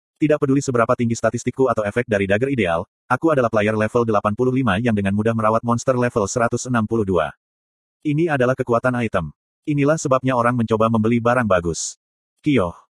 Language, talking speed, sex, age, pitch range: Indonesian, 155 wpm, male, 30-49, 110-135 Hz